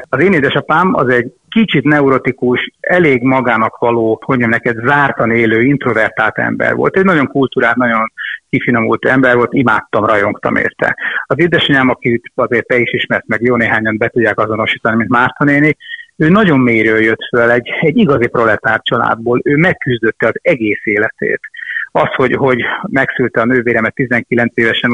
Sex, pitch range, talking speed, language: male, 115-135 Hz, 160 wpm, Hungarian